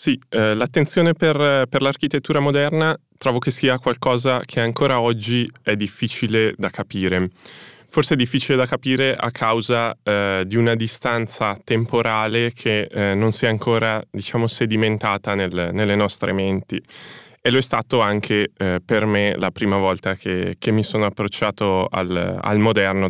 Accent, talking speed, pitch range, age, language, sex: native, 160 wpm, 95-125 Hz, 20-39, Italian, male